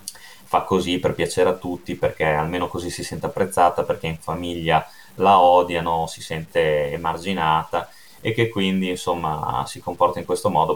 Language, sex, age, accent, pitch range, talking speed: Italian, male, 30-49, native, 90-115 Hz, 160 wpm